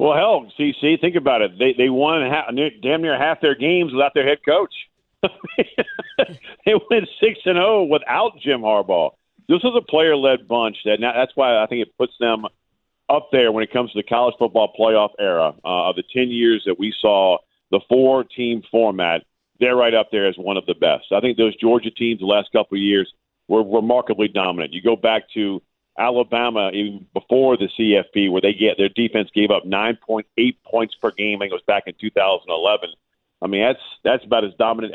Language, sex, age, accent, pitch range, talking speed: English, male, 50-69, American, 100-130 Hz, 205 wpm